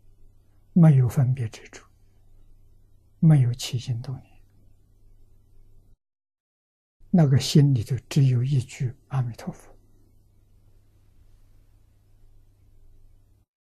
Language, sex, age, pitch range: Chinese, male, 60-79, 100-130 Hz